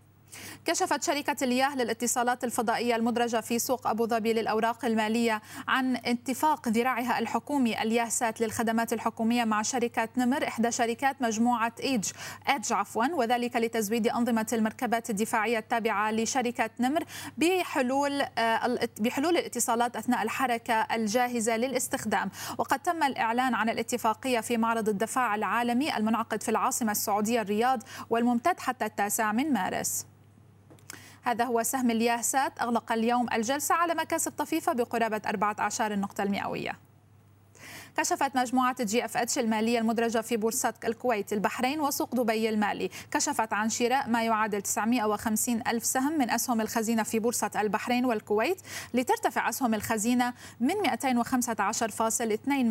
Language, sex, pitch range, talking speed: Arabic, female, 225-255 Hz, 125 wpm